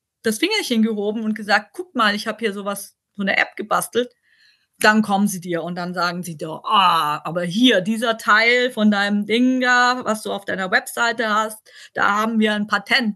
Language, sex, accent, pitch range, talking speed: German, female, German, 210-260 Hz, 205 wpm